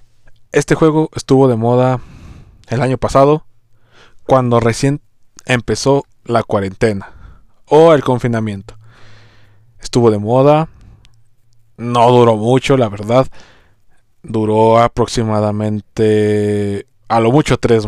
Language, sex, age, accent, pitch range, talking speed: Spanish, male, 20-39, Mexican, 105-125 Hz, 100 wpm